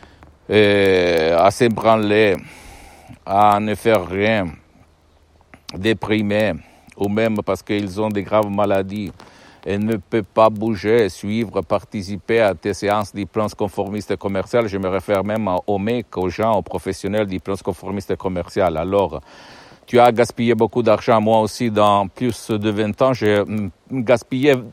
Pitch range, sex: 95-110 Hz, male